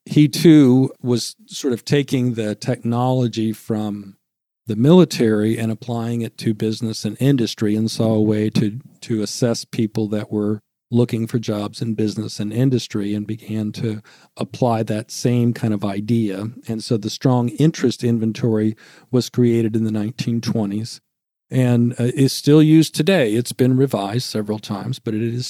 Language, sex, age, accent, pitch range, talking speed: English, male, 50-69, American, 110-130 Hz, 160 wpm